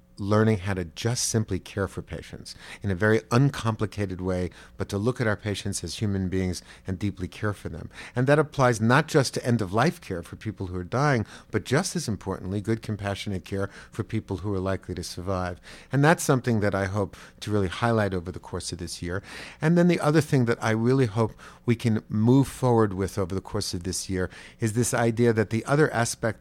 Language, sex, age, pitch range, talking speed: English, male, 50-69, 95-120 Hz, 225 wpm